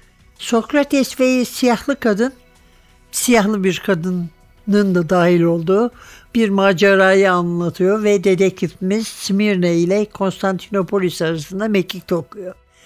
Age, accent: 60-79, native